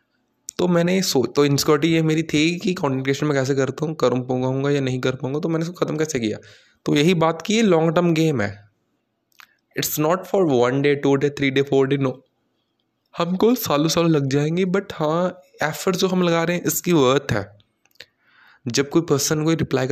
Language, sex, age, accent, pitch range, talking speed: Hindi, male, 20-39, native, 130-165 Hz, 205 wpm